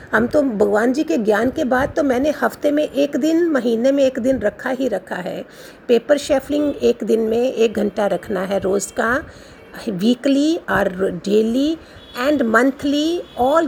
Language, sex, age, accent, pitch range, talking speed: Hindi, female, 50-69, native, 230-295 Hz, 170 wpm